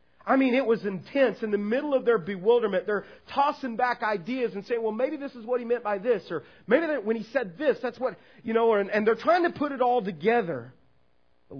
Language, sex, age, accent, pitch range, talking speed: English, male, 40-59, American, 150-240 Hz, 245 wpm